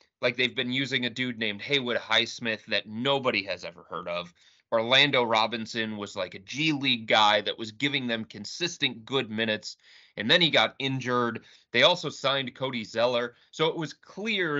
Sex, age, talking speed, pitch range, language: male, 30-49, 180 wpm, 110-140 Hz, English